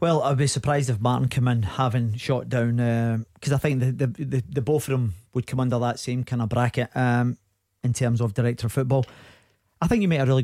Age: 40-59